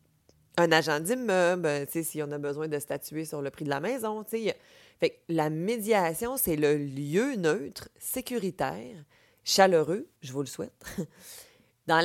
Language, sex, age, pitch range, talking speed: French, female, 30-49, 150-205 Hz, 140 wpm